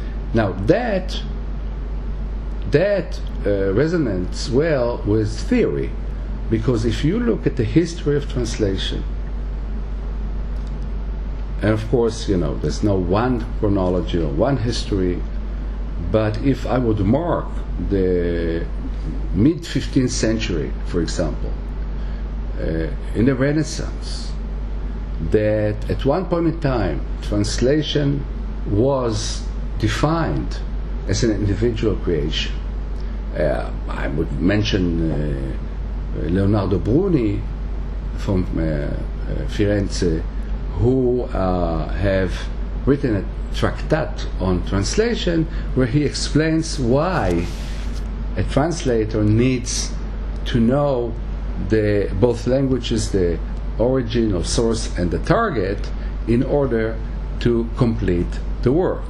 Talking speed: 100 wpm